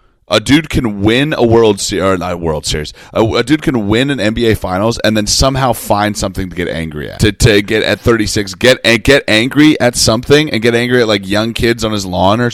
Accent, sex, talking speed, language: American, male, 245 wpm, English